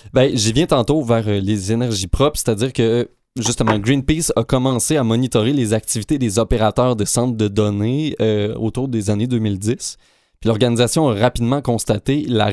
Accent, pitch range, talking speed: Canadian, 110-125 Hz, 165 wpm